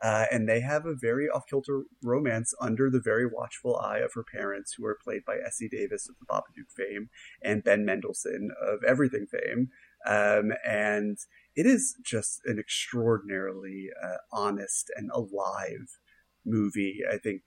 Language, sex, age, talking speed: English, male, 30-49, 160 wpm